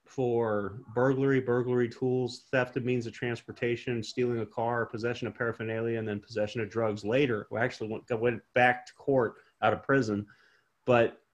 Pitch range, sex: 110-140 Hz, male